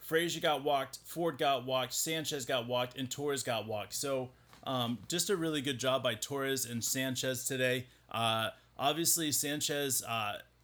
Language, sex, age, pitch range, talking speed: English, male, 30-49, 125-155 Hz, 165 wpm